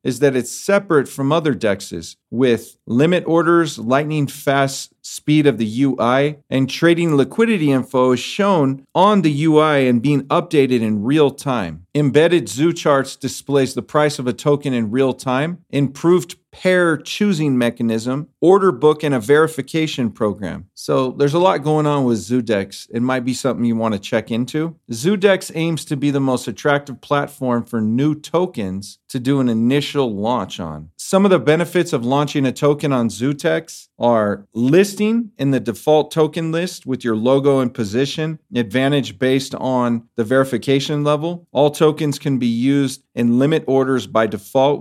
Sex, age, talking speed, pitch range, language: male, 40-59, 165 wpm, 120-155 Hz, English